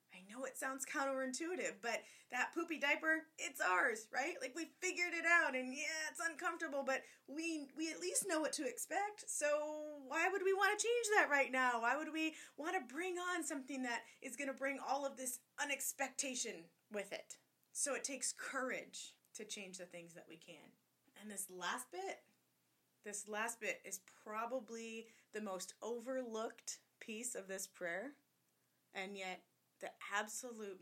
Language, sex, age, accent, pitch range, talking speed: English, female, 20-39, American, 215-295 Hz, 175 wpm